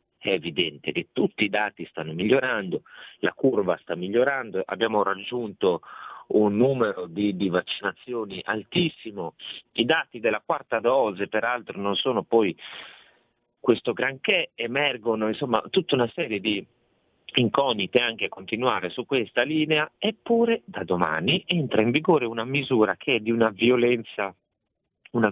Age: 40-59